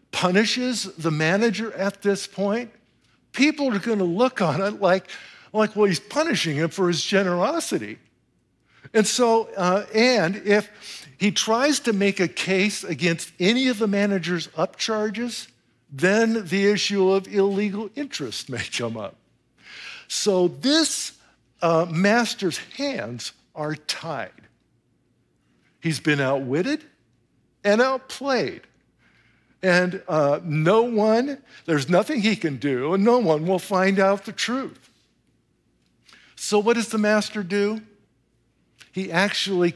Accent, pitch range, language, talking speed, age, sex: American, 165-220 Hz, English, 125 wpm, 60-79, male